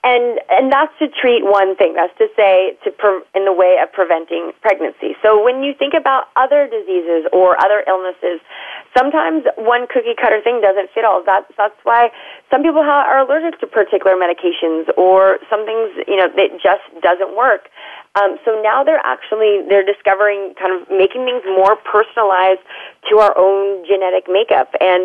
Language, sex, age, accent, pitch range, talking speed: English, female, 30-49, American, 180-245 Hz, 180 wpm